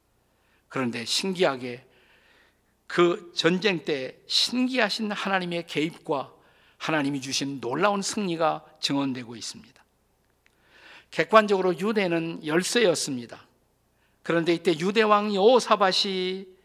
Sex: male